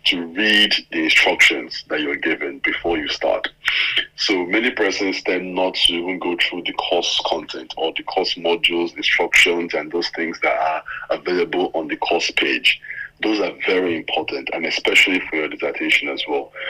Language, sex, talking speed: English, male, 175 wpm